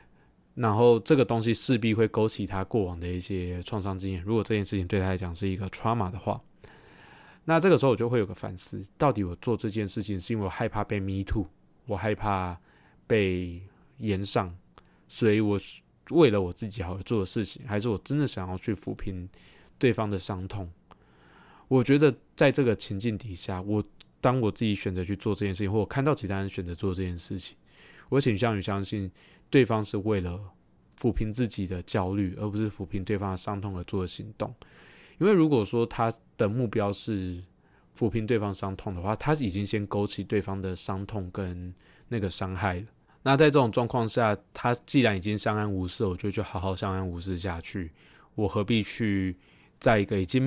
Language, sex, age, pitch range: Chinese, male, 20-39, 95-115 Hz